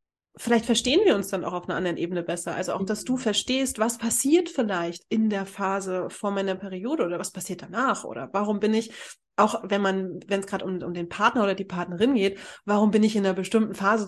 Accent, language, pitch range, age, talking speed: German, German, 185-220 Hz, 30-49, 230 wpm